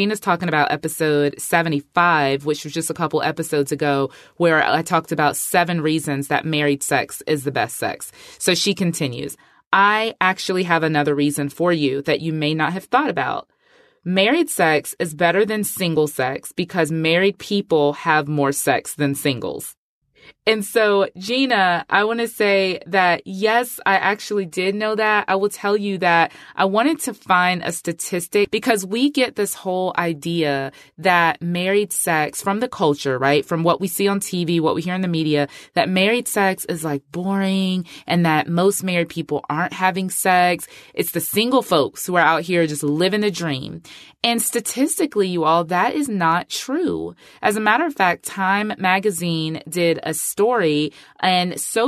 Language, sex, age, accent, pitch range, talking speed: English, female, 20-39, American, 160-200 Hz, 175 wpm